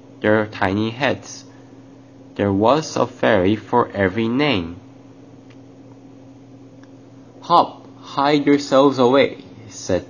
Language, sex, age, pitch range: Korean, male, 20-39, 100-135 Hz